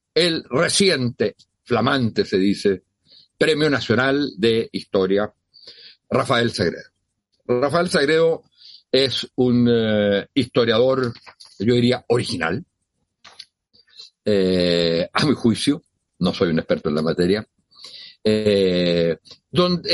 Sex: male